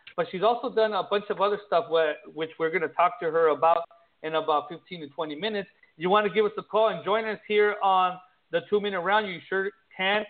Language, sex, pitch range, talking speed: English, male, 170-210 Hz, 240 wpm